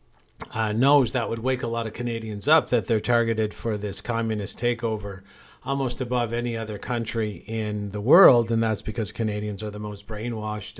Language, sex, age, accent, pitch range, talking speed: English, male, 50-69, American, 105-120 Hz, 185 wpm